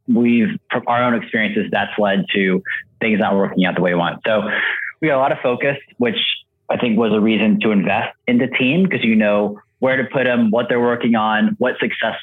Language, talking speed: English, 230 wpm